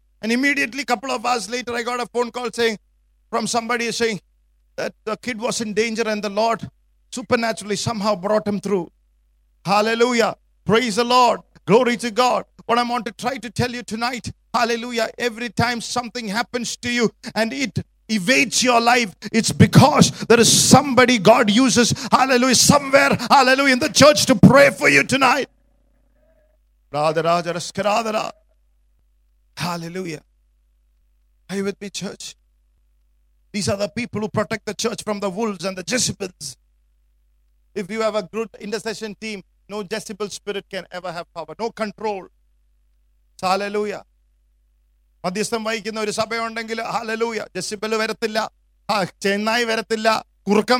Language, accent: English, Indian